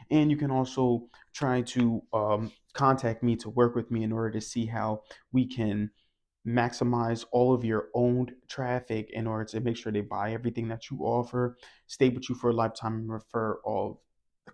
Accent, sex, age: American, male, 20-39